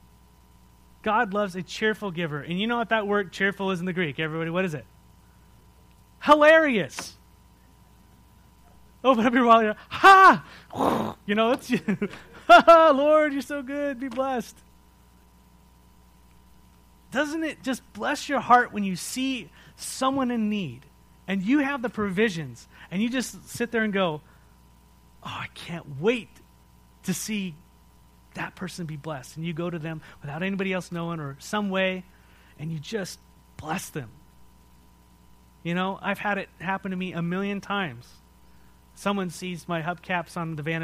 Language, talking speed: English, 160 wpm